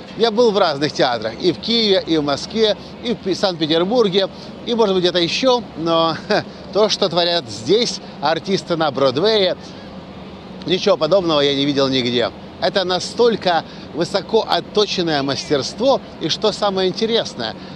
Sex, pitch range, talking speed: male, 165-205 Hz, 145 wpm